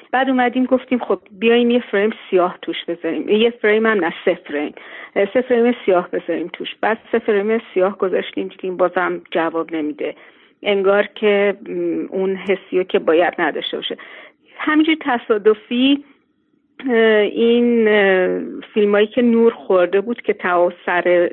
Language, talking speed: Persian, 130 wpm